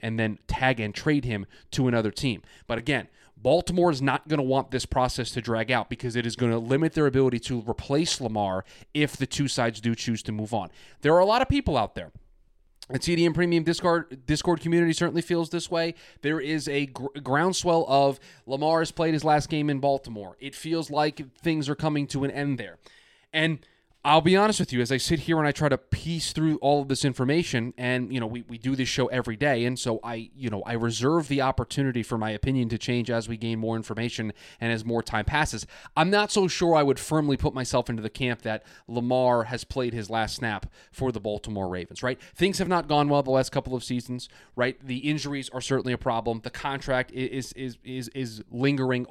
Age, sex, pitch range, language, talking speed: 20-39, male, 120-150 Hz, English, 230 wpm